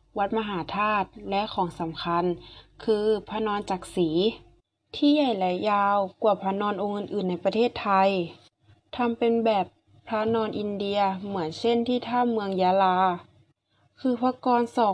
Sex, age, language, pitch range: female, 20-39, Thai, 185-230 Hz